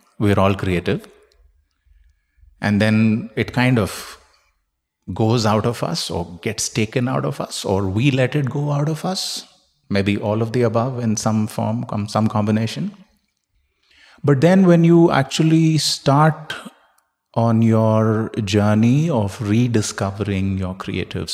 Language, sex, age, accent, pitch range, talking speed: English, male, 30-49, Indian, 100-120 Hz, 140 wpm